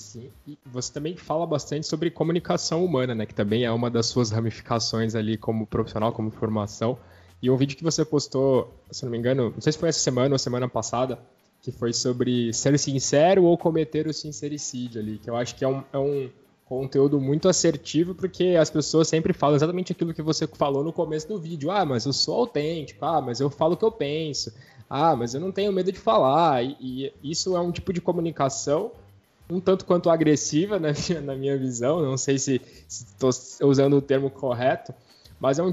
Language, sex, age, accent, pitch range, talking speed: Portuguese, male, 10-29, Brazilian, 125-160 Hz, 205 wpm